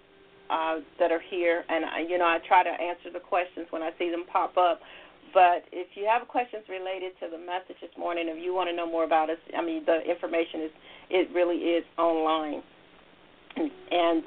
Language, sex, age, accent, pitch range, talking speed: English, female, 40-59, American, 165-190 Hz, 205 wpm